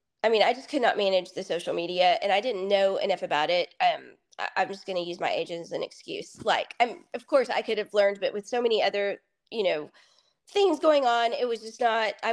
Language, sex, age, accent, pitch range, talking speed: English, female, 20-39, American, 195-265 Hz, 255 wpm